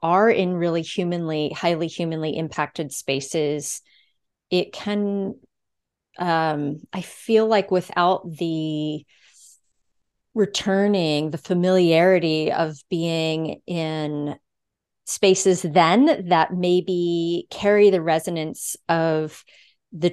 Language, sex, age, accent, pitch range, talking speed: English, female, 30-49, American, 155-185 Hz, 90 wpm